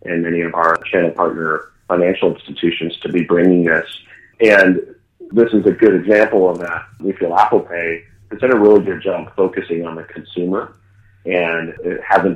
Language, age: English, 40-59